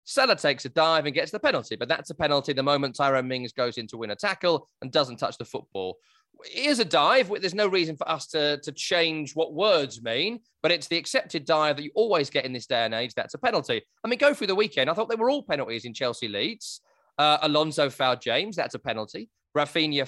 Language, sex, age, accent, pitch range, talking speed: English, male, 20-39, British, 135-200 Hz, 240 wpm